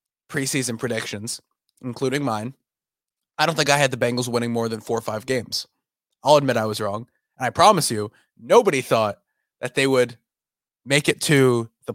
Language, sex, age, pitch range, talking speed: English, male, 20-39, 120-145 Hz, 180 wpm